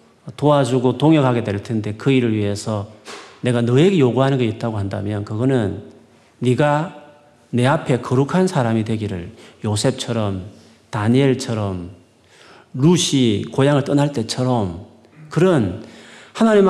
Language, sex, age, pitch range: Korean, male, 40-59, 105-150 Hz